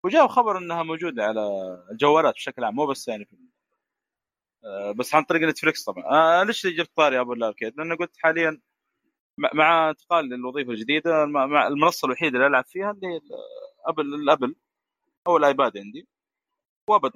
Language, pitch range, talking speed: English, 120-170 Hz, 145 wpm